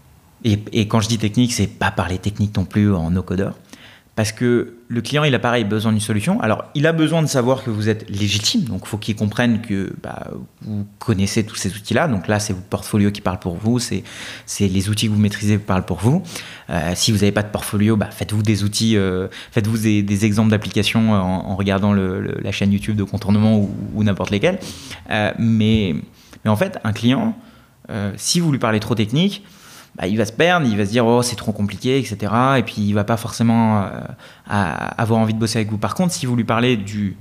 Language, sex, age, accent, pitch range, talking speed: French, male, 30-49, French, 100-115 Hz, 240 wpm